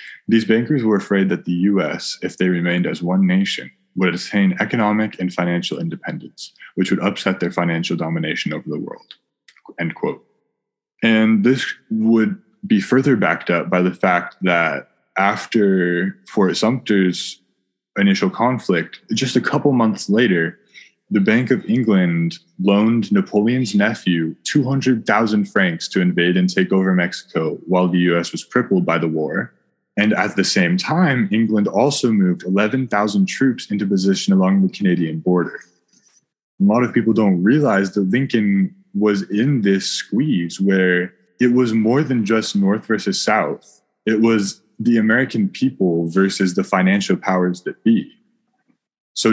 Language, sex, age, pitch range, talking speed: English, male, 20-39, 95-135 Hz, 150 wpm